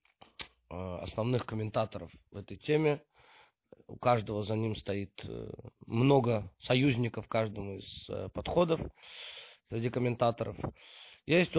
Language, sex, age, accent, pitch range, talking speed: Russian, male, 30-49, native, 115-150 Hz, 95 wpm